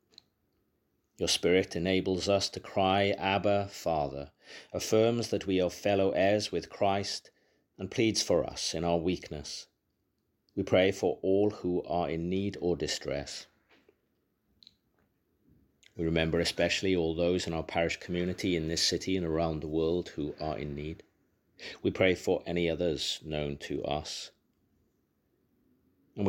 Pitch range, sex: 80-95 Hz, male